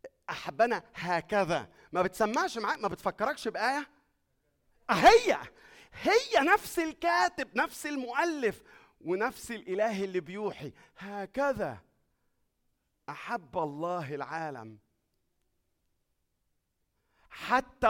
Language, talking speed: Arabic, 75 wpm